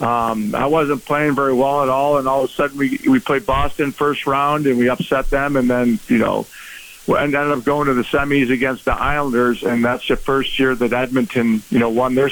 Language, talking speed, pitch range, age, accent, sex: English, 235 wpm, 120-140 Hz, 50-69, American, male